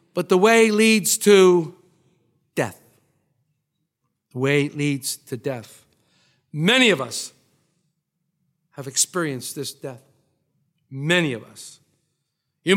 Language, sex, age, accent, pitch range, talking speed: English, male, 50-69, American, 160-245 Hz, 110 wpm